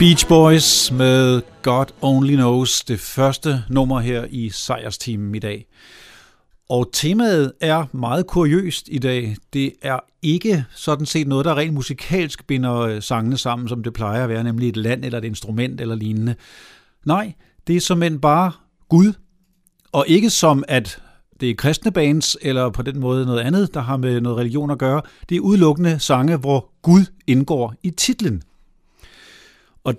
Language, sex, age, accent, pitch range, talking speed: Danish, male, 50-69, native, 120-155 Hz, 170 wpm